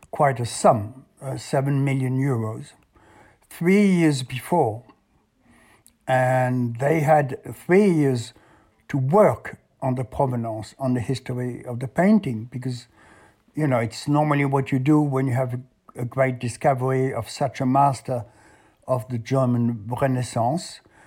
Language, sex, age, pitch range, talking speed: English, male, 60-79, 125-150 Hz, 140 wpm